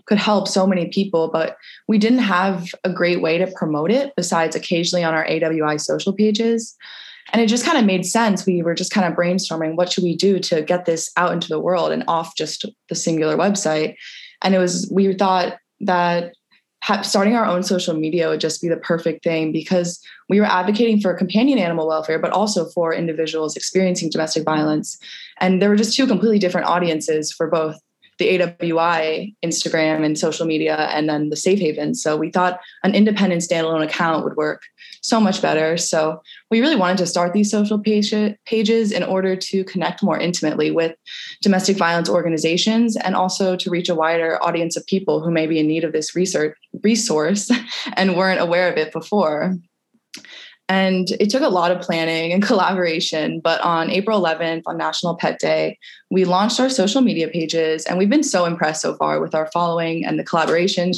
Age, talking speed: 20-39, 195 wpm